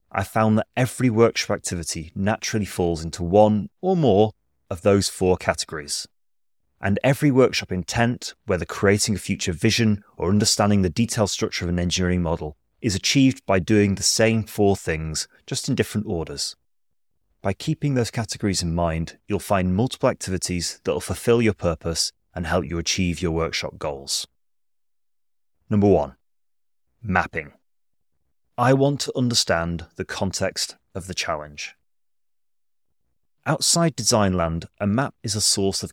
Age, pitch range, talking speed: 30-49, 90-115 Hz, 145 wpm